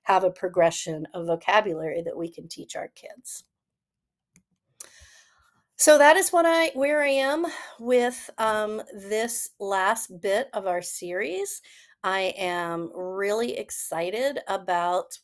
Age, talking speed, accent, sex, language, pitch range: 40-59, 125 wpm, American, female, English, 180-230 Hz